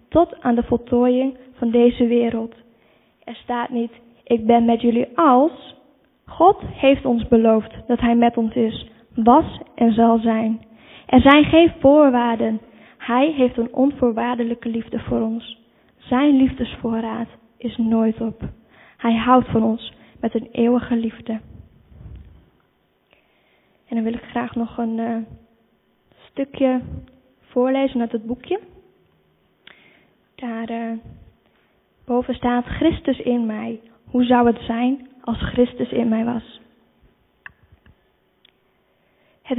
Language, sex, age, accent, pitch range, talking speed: Dutch, female, 10-29, Dutch, 230-250 Hz, 125 wpm